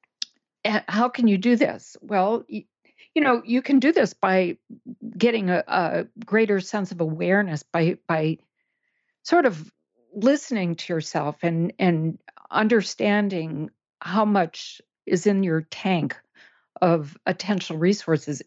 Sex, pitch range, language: female, 170-230 Hz, English